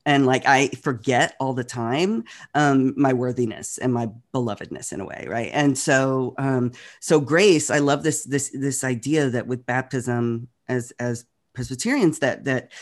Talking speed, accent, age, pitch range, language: 170 wpm, American, 40-59, 120-145 Hz, English